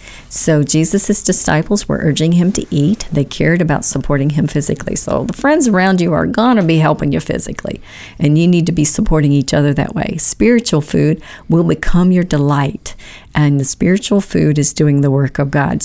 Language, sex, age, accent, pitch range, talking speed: English, female, 50-69, American, 145-175 Hz, 195 wpm